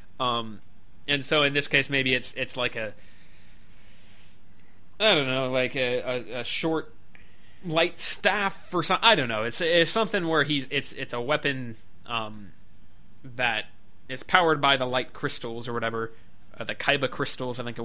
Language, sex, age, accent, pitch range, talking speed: English, male, 20-39, American, 115-150 Hz, 175 wpm